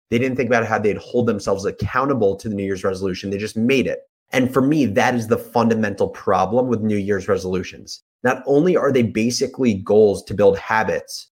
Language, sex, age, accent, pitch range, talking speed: English, male, 30-49, American, 105-140 Hz, 205 wpm